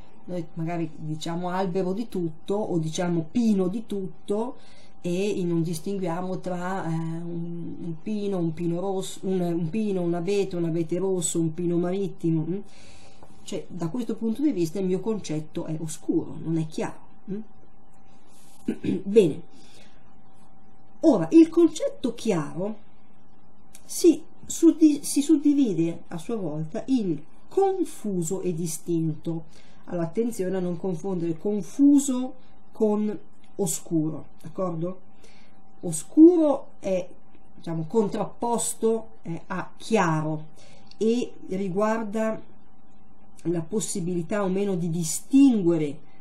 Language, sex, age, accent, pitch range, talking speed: Italian, female, 40-59, native, 170-220 Hz, 105 wpm